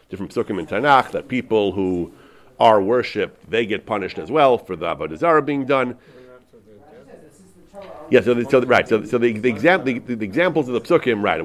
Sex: male